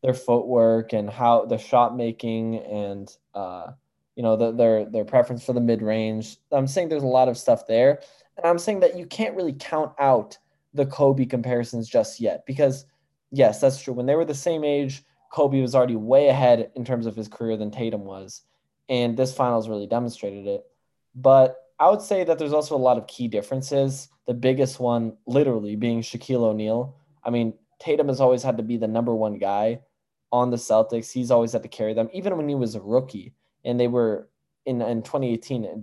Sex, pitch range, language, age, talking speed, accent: male, 115-140 Hz, English, 10-29, 205 wpm, American